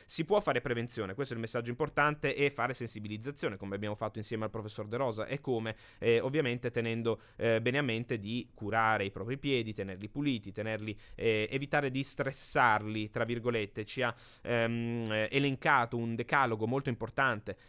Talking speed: 175 wpm